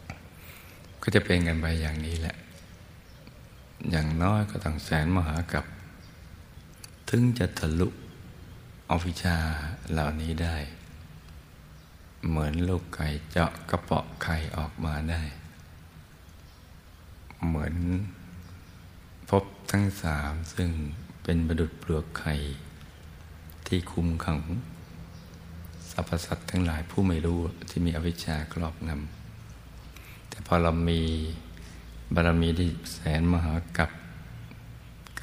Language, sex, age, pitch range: Thai, male, 60-79, 80-85 Hz